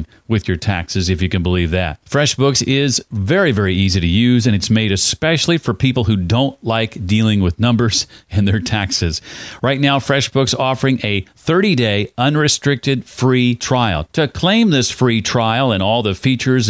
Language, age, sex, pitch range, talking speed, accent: English, 40-59, male, 100-130 Hz, 175 wpm, American